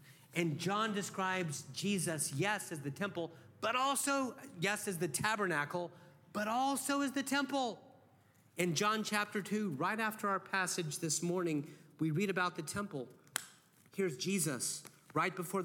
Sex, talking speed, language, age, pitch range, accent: male, 145 wpm, English, 40-59, 135-185 Hz, American